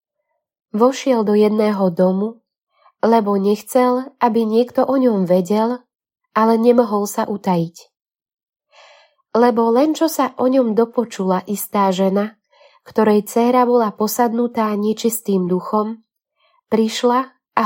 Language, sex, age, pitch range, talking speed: Slovak, female, 20-39, 190-230 Hz, 110 wpm